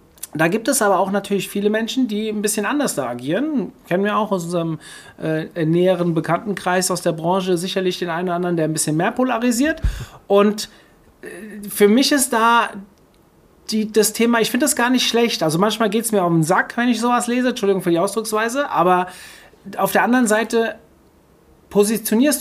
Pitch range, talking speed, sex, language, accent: 180-225 Hz, 195 wpm, male, German, German